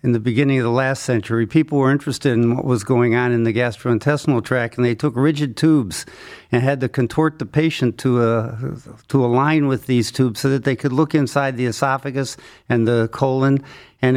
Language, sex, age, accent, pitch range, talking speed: English, male, 60-79, American, 120-140 Hz, 210 wpm